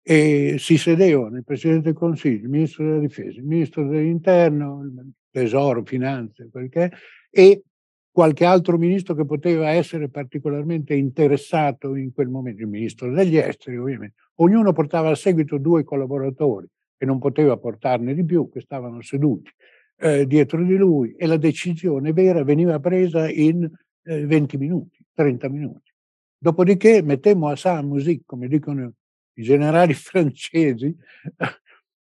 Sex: male